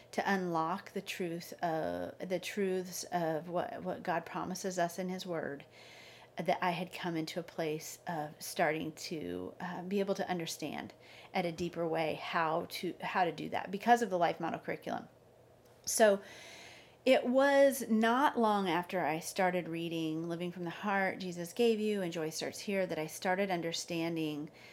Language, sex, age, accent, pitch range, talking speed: English, female, 40-59, American, 165-195 Hz, 175 wpm